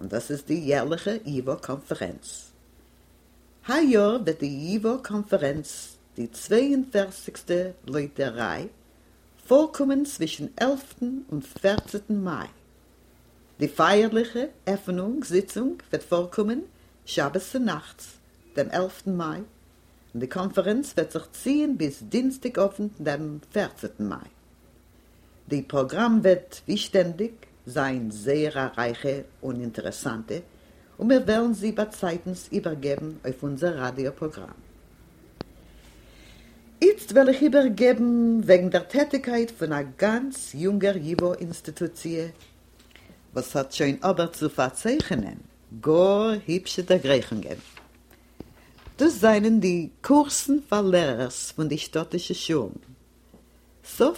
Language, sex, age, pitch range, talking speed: English, female, 50-69, 135-215 Hz, 105 wpm